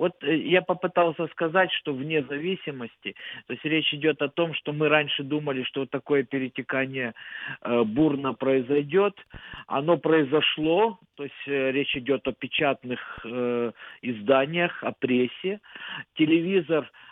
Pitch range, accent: 130-160 Hz, native